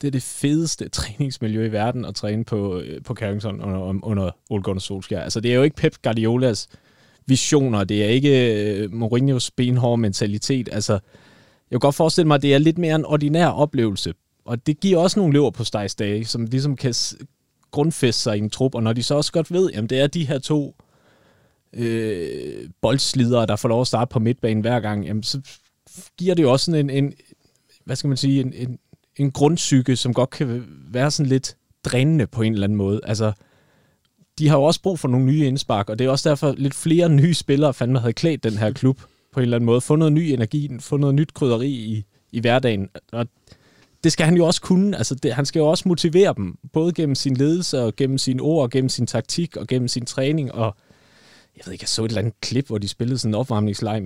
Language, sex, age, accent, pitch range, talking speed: Danish, male, 30-49, native, 110-145 Hz, 220 wpm